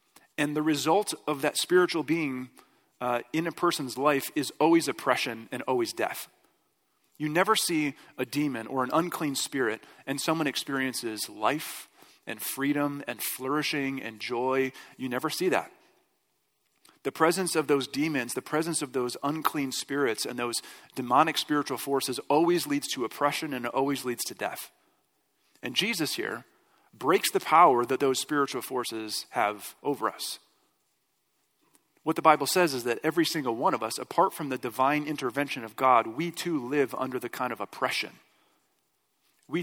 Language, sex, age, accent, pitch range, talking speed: English, male, 40-59, American, 130-160 Hz, 160 wpm